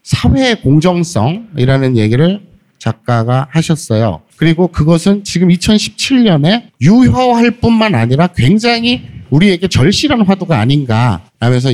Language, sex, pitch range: Korean, male, 120-205 Hz